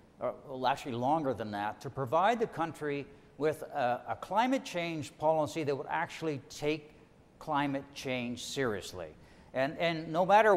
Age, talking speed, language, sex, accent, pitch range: 60-79, 150 wpm, English, male, American, 135-175 Hz